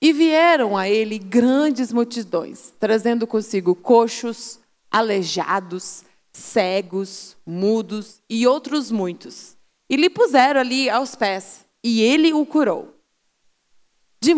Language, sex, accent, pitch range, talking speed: Portuguese, female, Brazilian, 215-265 Hz, 110 wpm